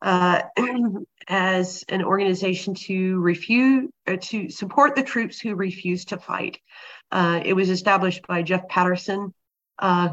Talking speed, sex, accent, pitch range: 130 wpm, female, American, 175-190 Hz